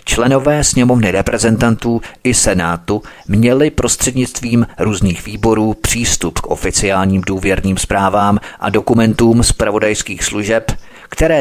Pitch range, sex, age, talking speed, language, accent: 95-115 Hz, male, 40-59, 100 wpm, Czech, native